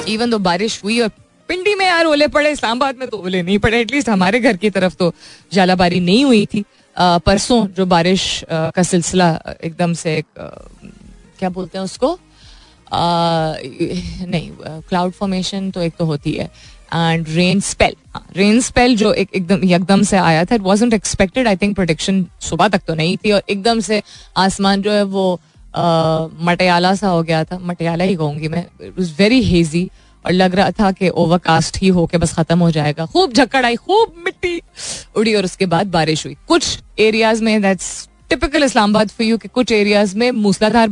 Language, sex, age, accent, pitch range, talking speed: Hindi, female, 20-39, native, 175-225 Hz, 170 wpm